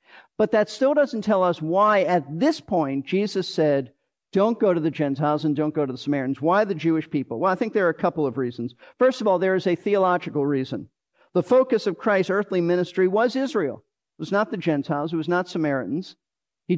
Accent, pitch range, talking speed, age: American, 160-210 Hz, 220 wpm, 50-69